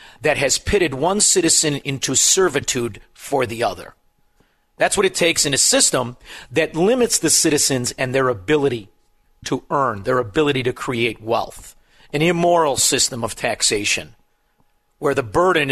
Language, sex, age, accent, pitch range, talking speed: English, male, 50-69, American, 125-155 Hz, 150 wpm